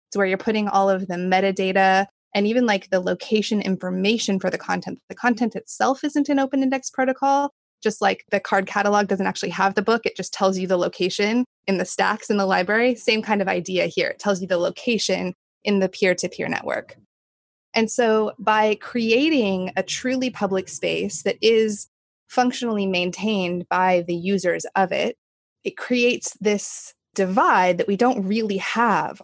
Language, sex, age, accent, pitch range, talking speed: English, female, 20-39, American, 185-225 Hz, 175 wpm